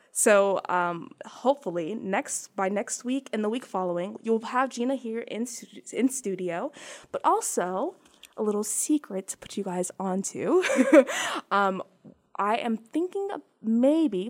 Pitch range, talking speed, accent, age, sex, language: 215-305 Hz, 140 wpm, American, 20-39, female, English